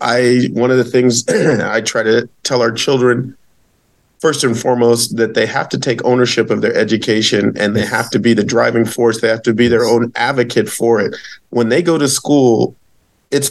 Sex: male